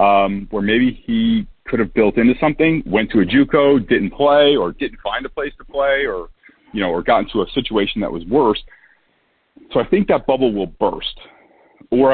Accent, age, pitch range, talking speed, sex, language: American, 40-59, 105-145 Hz, 215 wpm, male, English